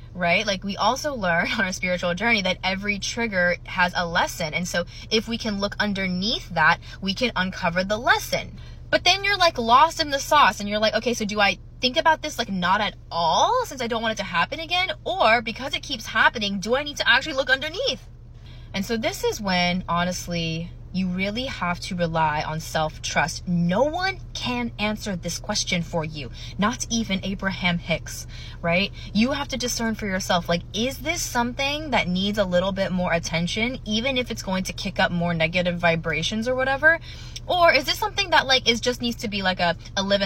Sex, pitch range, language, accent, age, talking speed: female, 175-245 Hz, English, American, 20-39, 210 wpm